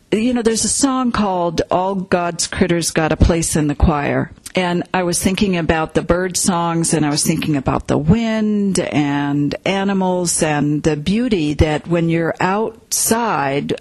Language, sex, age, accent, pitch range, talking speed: English, female, 50-69, American, 160-200 Hz, 170 wpm